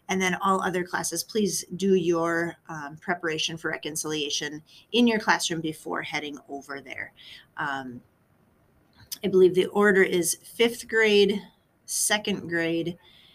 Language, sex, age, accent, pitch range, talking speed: English, female, 30-49, American, 170-215 Hz, 130 wpm